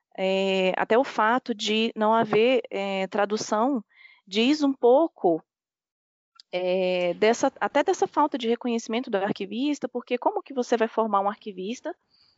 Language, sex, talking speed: Portuguese, female, 120 wpm